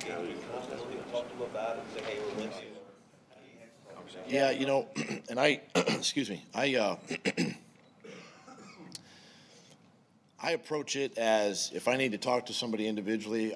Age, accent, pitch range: 40-59, American, 90-105 Hz